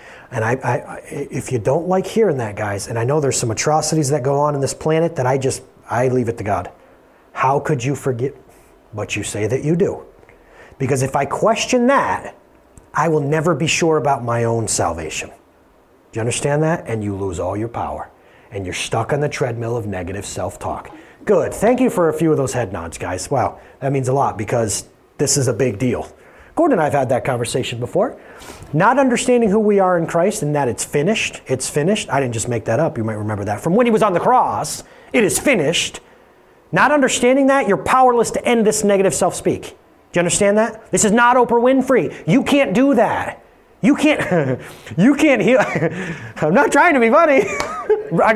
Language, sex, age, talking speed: English, male, 30-49, 215 wpm